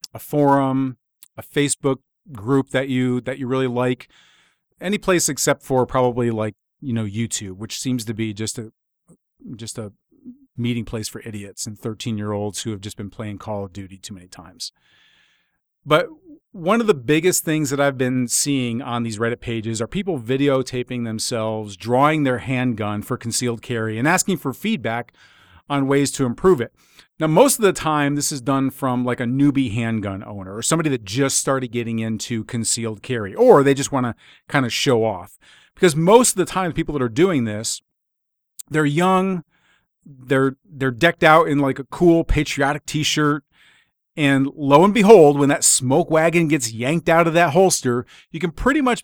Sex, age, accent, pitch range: male, 40-59, American, 115-160 Hz